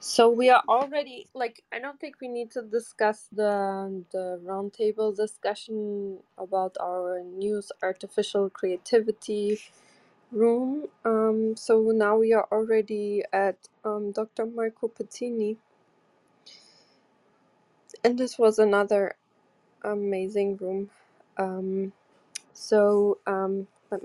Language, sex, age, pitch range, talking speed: English, female, 20-39, 195-230 Hz, 110 wpm